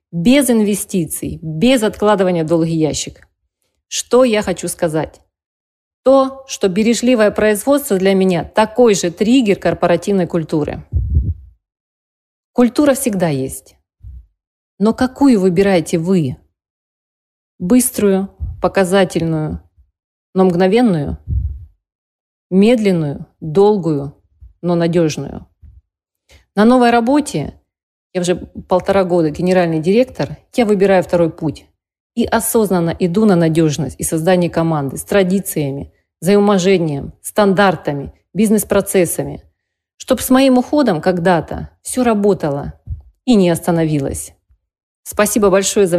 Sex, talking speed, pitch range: female, 100 wpm, 150-210 Hz